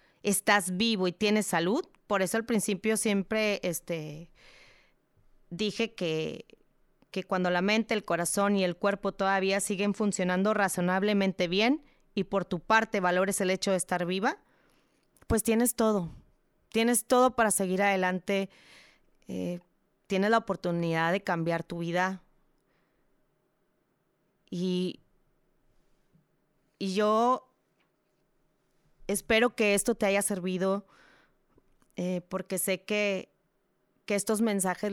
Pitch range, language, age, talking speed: 180-210 Hz, English, 30-49, 120 wpm